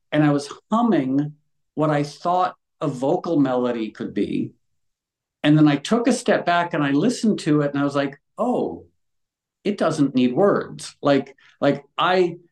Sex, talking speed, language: male, 175 wpm, English